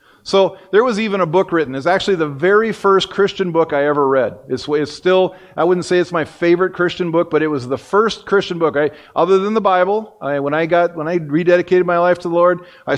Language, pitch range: English, 160-200 Hz